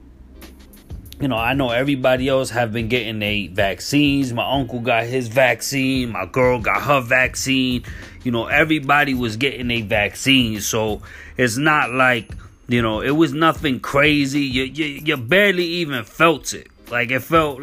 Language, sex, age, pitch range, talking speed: English, male, 30-49, 110-140 Hz, 165 wpm